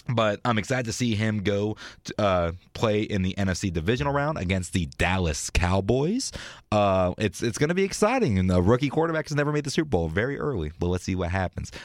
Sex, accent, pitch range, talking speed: male, American, 90-130 Hz, 215 wpm